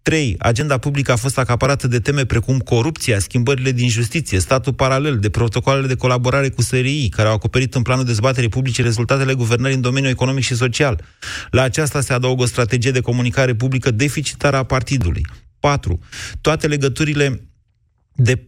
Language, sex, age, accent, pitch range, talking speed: Romanian, male, 30-49, native, 115-135 Hz, 165 wpm